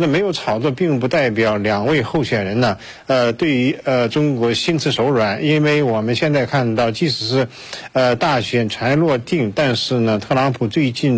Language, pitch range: Chinese, 120-150 Hz